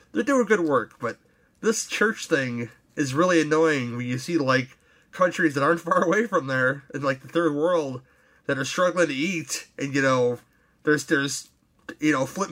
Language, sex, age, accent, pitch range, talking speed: English, male, 30-49, American, 130-160 Hz, 190 wpm